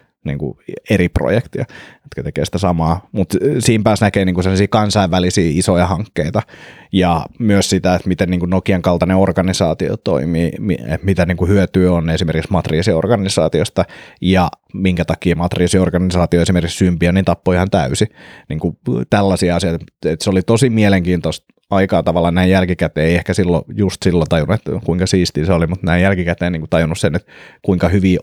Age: 30-49